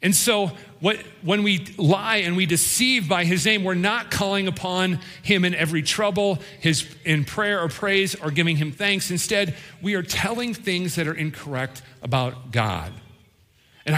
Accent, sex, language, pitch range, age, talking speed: American, male, English, 150-205 Hz, 40-59, 170 wpm